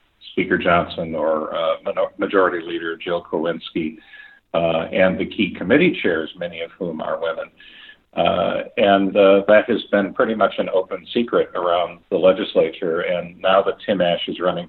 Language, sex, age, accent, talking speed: English, male, 50-69, American, 165 wpm